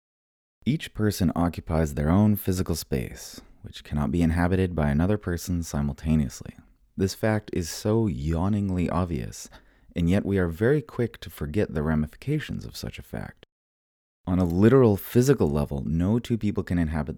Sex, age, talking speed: male, 30-49, 155 wpm